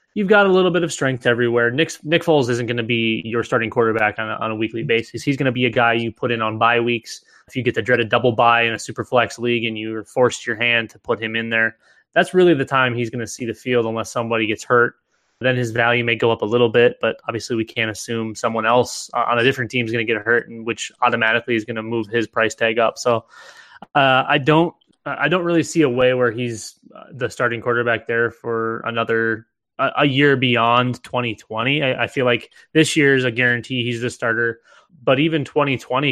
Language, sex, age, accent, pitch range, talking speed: English, male, 20-39, American, 115-135 Hz, 245 wpm